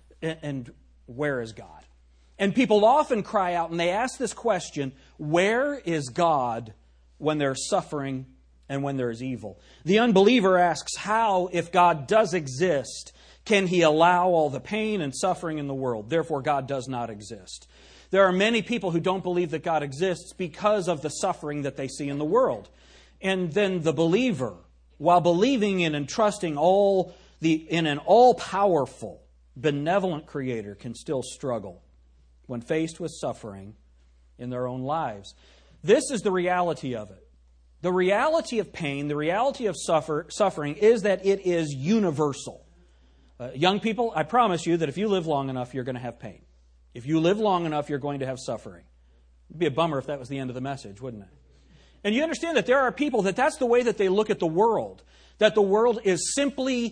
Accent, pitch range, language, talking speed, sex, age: American, 125-195 Hz, English, 190 wpm, male, 40-59